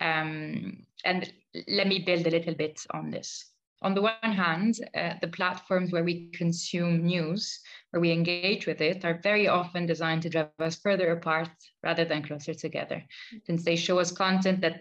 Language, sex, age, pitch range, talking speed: English, female, 20-39, 165-190 Hz, 180 wpm